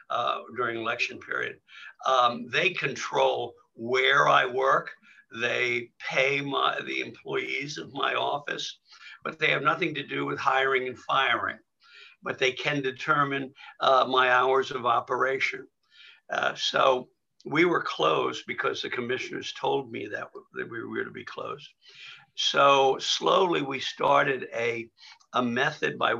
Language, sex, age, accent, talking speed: English, male, 60-79, American, 140 wpm